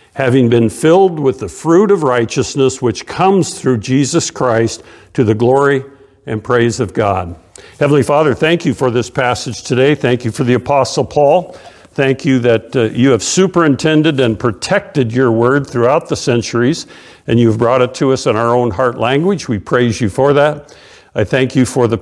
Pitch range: 115-140 Hz